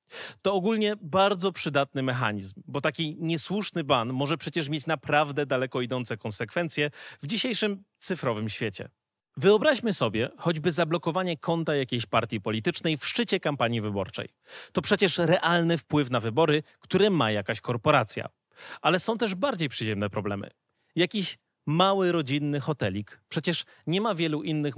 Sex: male